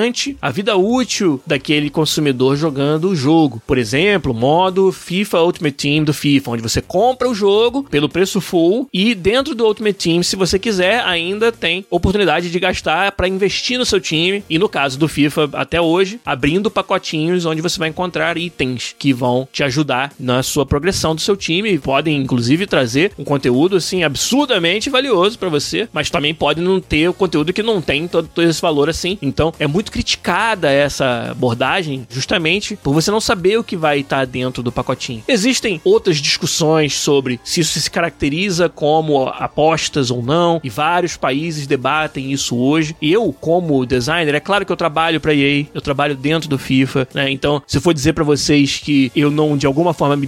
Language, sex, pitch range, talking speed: Portuguese, male, 145-190 Hz, 185 wpm